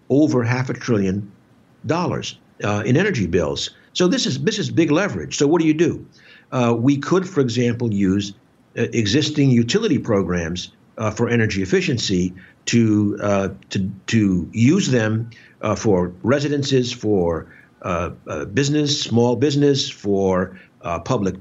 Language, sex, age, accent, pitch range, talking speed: English, male, 60-79, American, 105-145 Hz, 150 wpm